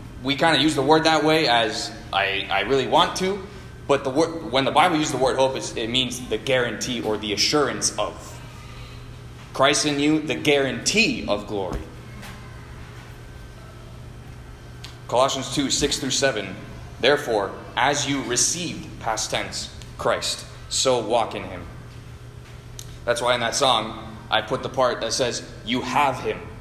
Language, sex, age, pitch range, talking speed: English, male, 20-39, 115-145 Hz, 150 wpm